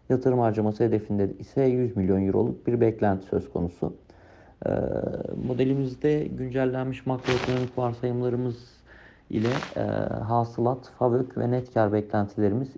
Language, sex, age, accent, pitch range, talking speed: Turkish, male, 50-69, native, 100-120 Hz, 110 wpm